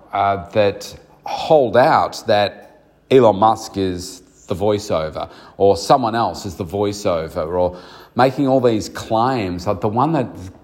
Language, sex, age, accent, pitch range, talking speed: English, male, 40-59, Australian, 100-125 Hz, 140 wpm